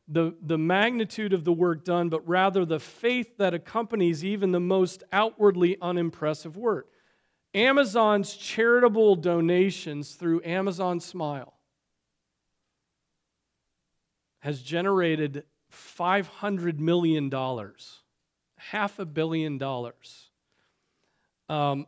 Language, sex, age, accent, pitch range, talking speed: English, male, 40-59, American, 145-190 Hz, 95 wpm